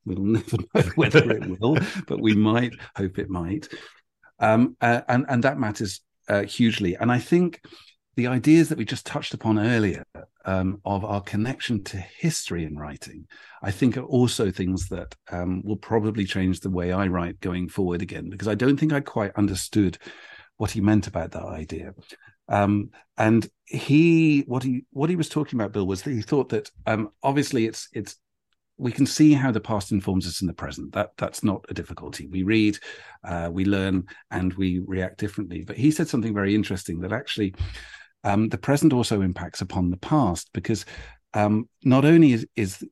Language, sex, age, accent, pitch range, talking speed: English, male, 50-69, British, 95-125 Hz, 190 wpm